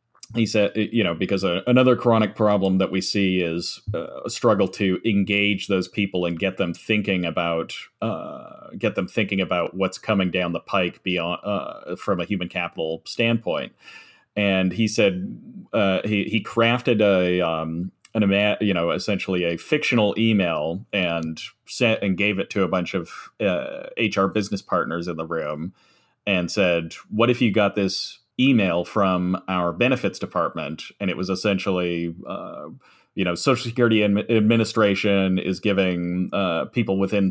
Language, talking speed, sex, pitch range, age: English, 160 wpm, male, 90-105 Hz, 30-49